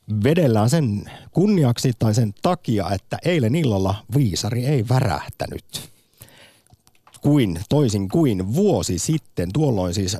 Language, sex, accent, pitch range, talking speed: Finnish, male, native, 95-125 Hz, 110 wpm